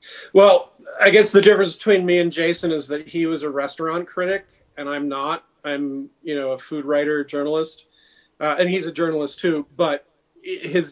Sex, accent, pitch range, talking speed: male, American, 140-165 Hz, 185 wpm